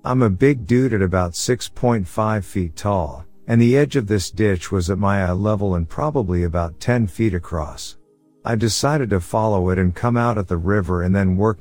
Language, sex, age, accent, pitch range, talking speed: English, male, 50-69, American, 90-115 Hz, 205 wpm